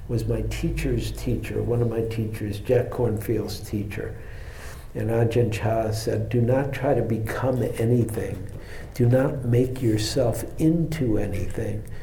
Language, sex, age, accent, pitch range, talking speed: English, male, 60-79, American, 110-130 Hz, 135 wpm